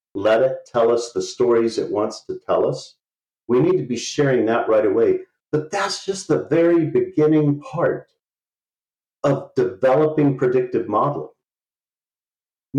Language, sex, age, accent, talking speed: English, male, 50-69, American, 140 wpm